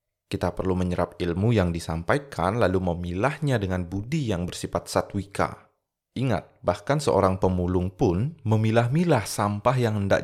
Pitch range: 90-125 Hz